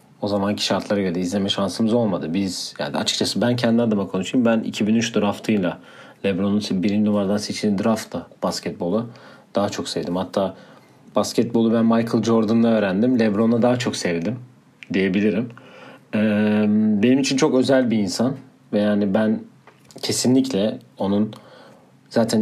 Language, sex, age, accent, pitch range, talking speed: Turkish, male, 40-59, native, 105-125 Hz, 130 wpm